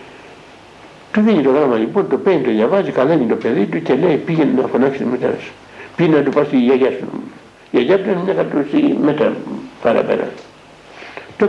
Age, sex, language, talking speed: 60-79, male, Greek, 180 wpm